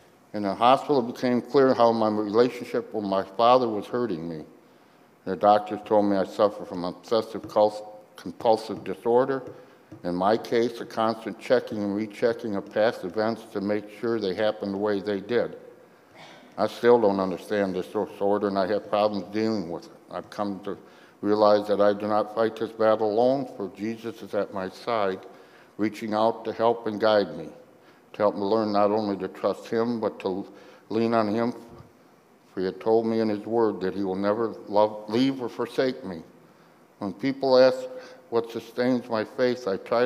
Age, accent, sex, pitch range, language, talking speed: 60-79, American, male, 100-115 Hz, English, 180 wpm